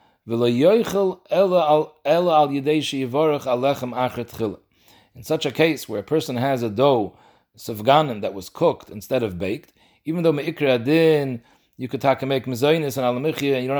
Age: 40-59